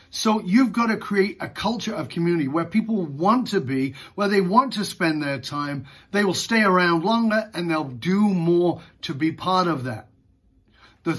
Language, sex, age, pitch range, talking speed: English, male, 40-59, 140-215 Hz, 195 wpm